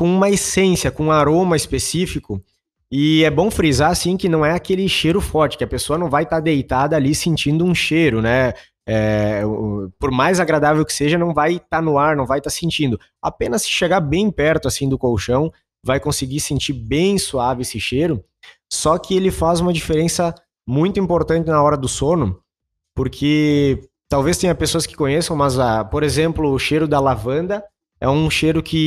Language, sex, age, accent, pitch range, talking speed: Portuguese, male, 20-39, Brazilian, 130-160 Hz, 195 wpm